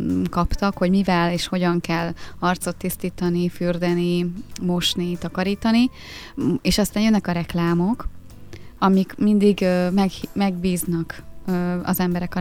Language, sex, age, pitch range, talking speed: Hungarian, female, 20-39, 170-195 Hz, 100 wpm